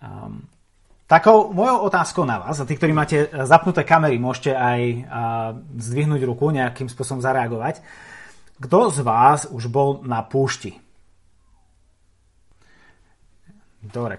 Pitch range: 120-150 Hz